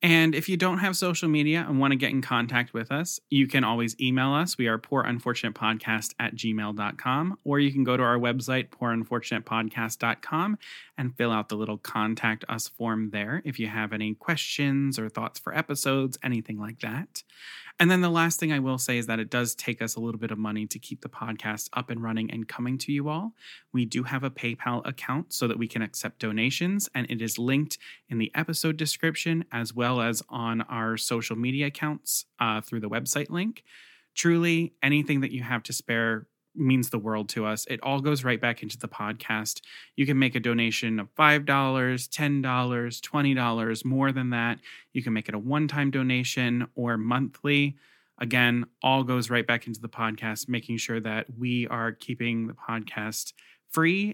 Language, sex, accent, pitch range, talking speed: English, male, American, 115-140 Hz, 195 wpm